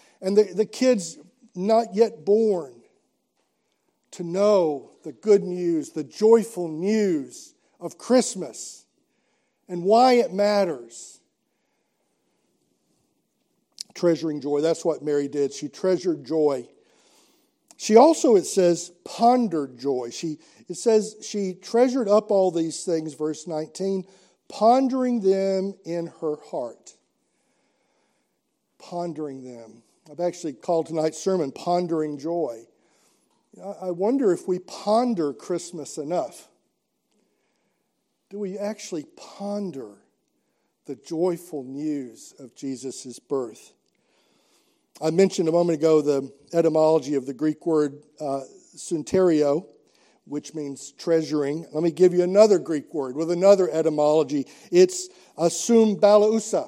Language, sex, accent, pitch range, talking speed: English, male, American, 155-205 Hz, 110 wpm